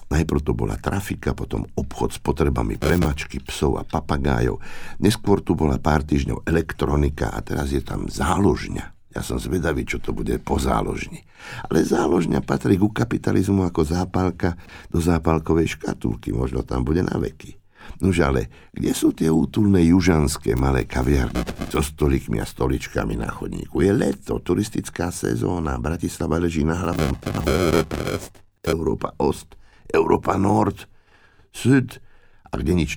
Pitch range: 70-95 Hz